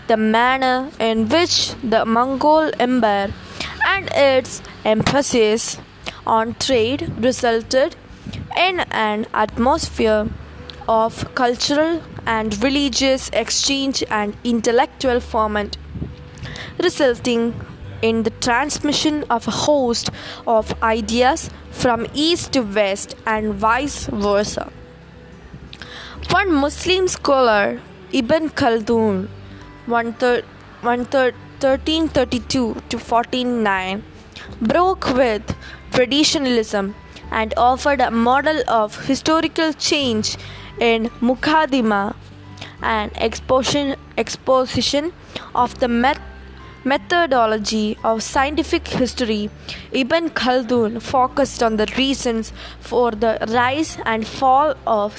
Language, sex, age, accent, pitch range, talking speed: English, female, 20-39, Indian, 225-275 Hz, 90 wpm